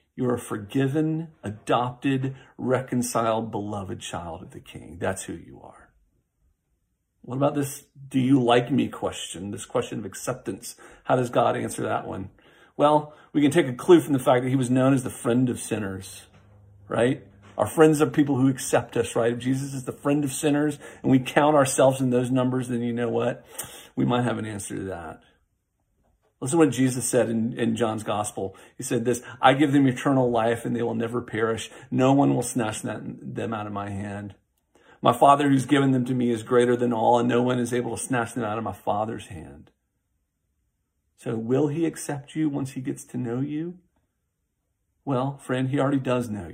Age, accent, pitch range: 40-59, American, 115-135 Hz